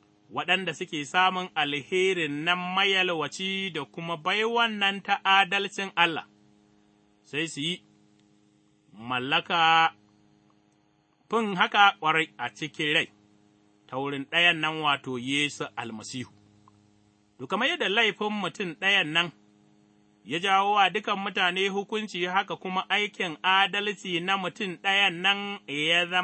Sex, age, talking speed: male, 30-49, 105 wpm